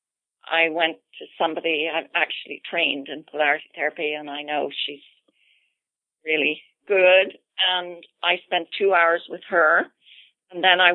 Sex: female